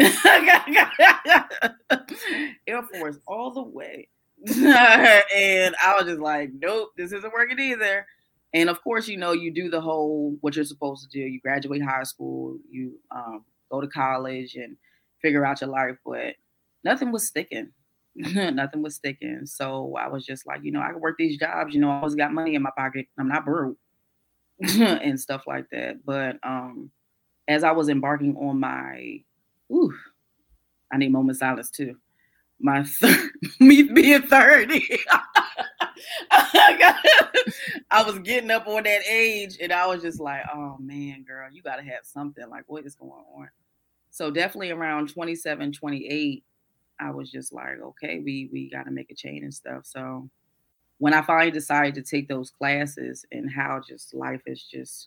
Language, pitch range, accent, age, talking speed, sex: English, 130-180 Hz, American, 20-39, 170 wpm, female